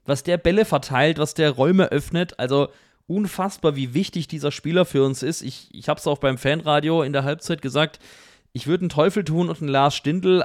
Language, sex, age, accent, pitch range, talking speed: German, male, 30-49, German, 130-155 Hz, 205 wpm